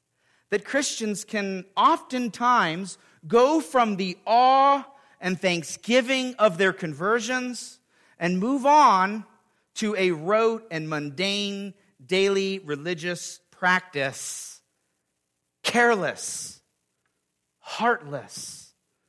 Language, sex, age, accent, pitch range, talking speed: English, male, 40-59, American, 180-240 Hz, 80 wpm